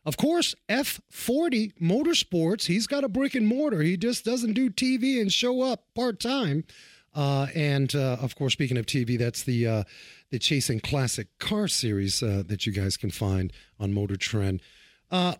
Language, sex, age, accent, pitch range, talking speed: English, male, 40-59, American, 135-220 Hz, 175 wpm